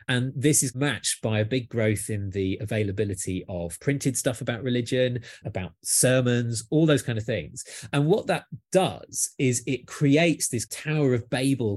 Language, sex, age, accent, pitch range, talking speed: English, male, 30-49, British, 110-140 Hz, 175 wpm